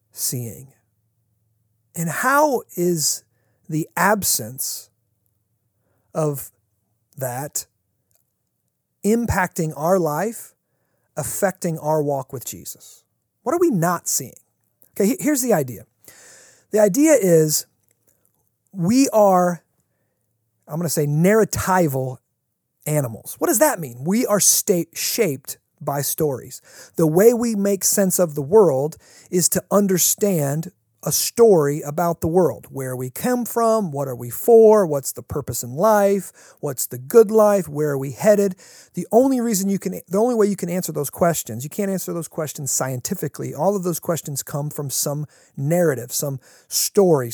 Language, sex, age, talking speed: English, male, 40-59, 140 wpm